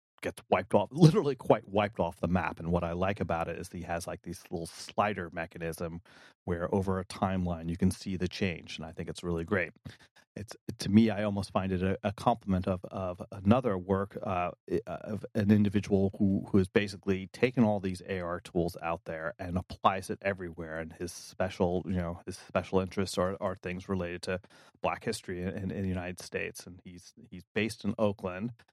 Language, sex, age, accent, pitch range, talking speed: English, male, 30-49, American, 90-100 Hz, 205 wpm